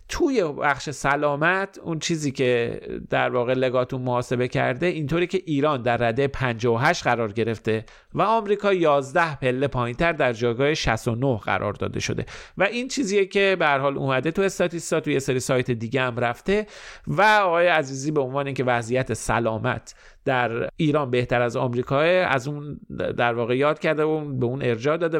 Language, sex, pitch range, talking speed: Persian, male, 120-160 Hz, 165 wpm